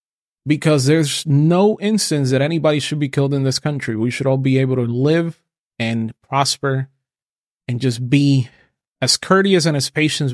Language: English